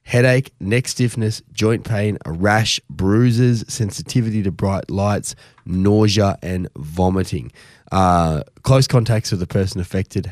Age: 20-39